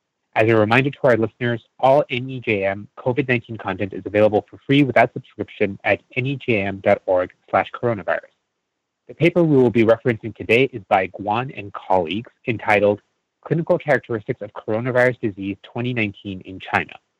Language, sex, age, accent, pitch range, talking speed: English, male, 30-49, American, 105-130 Hz, 145 wpm